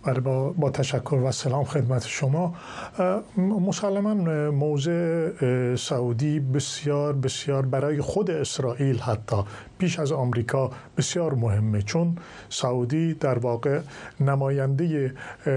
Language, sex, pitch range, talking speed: Persian, male, 135-180 Hz, 95 wpm